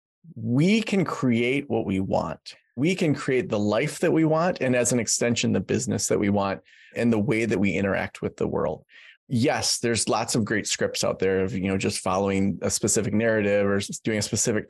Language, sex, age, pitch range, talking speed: English, male, 20-39, 105-135 Hz, 210 wpm